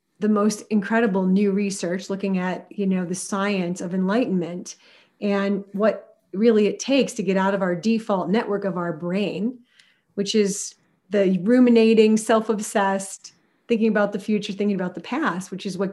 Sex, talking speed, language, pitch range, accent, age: female, 165 wpm, English, 195-245 Hz, American, 30-49